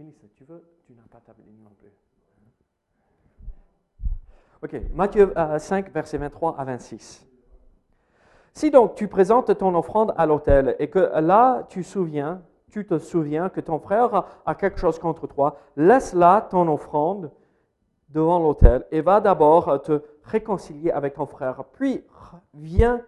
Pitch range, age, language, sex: 145-195 Hz, 50-69, French, male